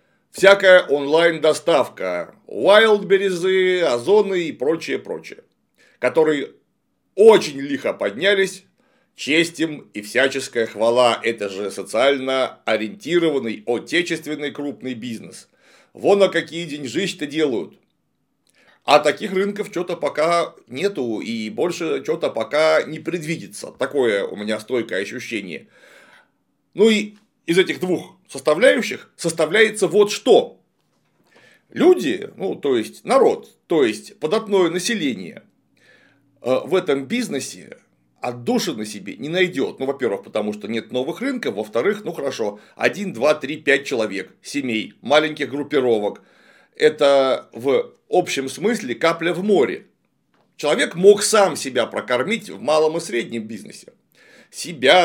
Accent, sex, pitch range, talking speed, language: native, male, 140-210 Hz, 120 wpm, Russian